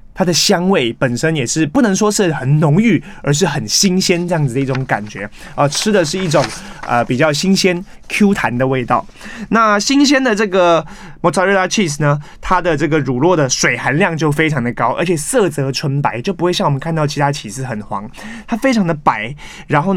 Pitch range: 140-195 Hz